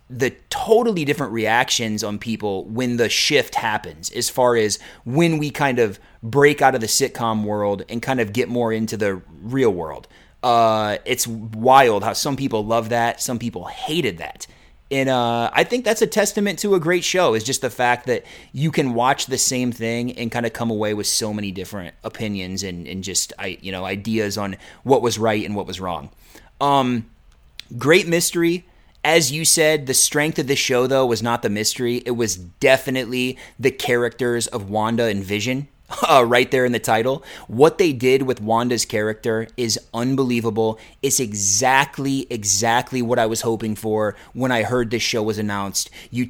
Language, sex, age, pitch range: English, male, 30-49, 110-135 Hz